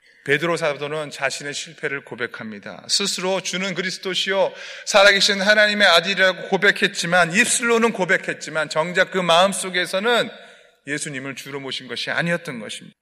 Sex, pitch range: male, 155-220 Hz